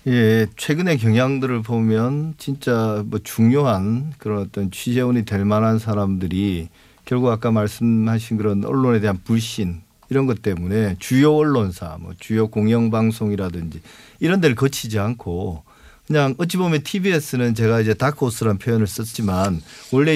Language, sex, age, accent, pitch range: Korean, male, 40-59, native, 105-130 Hz